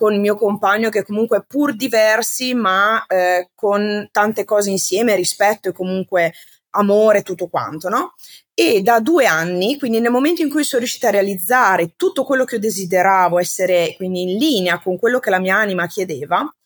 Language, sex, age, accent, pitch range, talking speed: Italian, female, 20-39, native, 185-230 Hz, 180 wpm